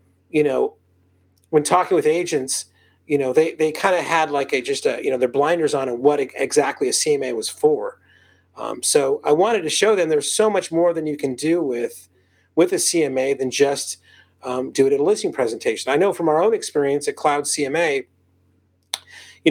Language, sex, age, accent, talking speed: English, male, 40-59, American, 205 wpm